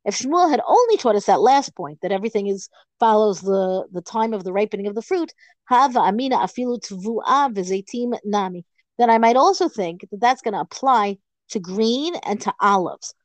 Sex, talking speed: female, 170 wpm